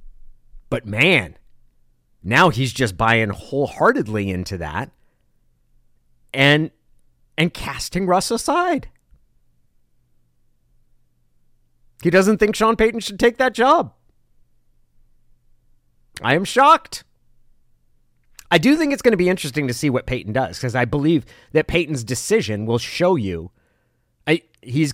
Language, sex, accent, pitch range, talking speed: English, male, American, 95-145 Hz, 120 wpm